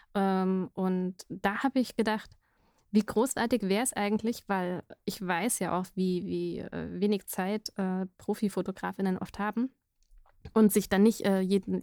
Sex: female